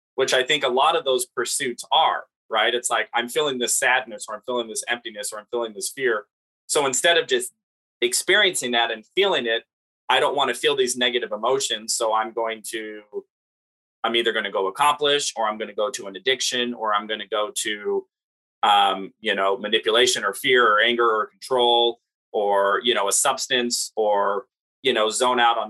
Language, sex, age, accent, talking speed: English, male, 20-39, American, 205 wpm